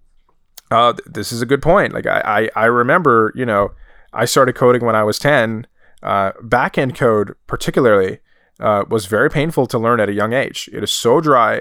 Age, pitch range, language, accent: 20-39, 115-145 Hz, English, American